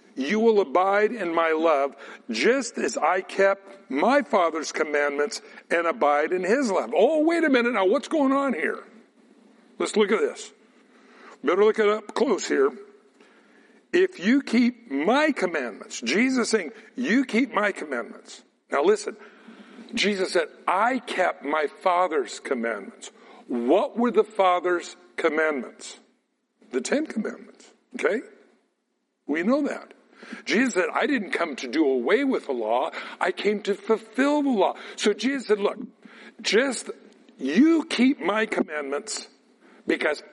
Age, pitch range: 60-79, 190-275 Hz